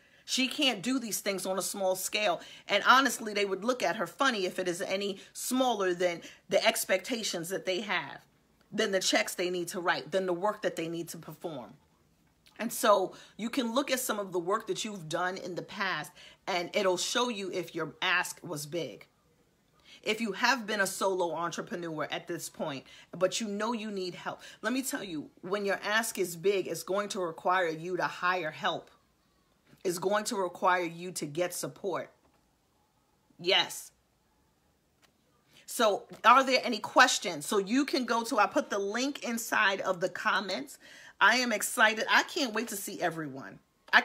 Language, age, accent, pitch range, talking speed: English, 40-59, American, 180-225 Hz, 190 wpm